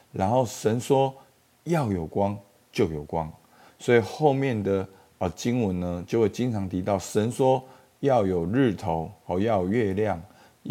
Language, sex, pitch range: Chinese, male, 95-125 Hz